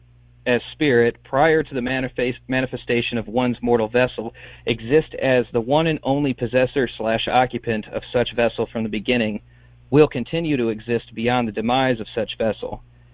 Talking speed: 160 wpm